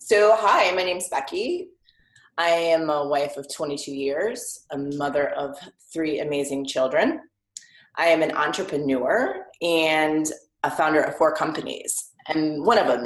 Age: 30-49